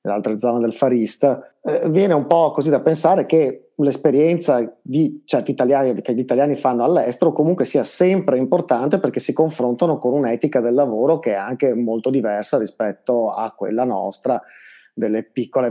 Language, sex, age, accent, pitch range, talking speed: Italian, male, 30-49, native, 125-155 Hz, 165 wpm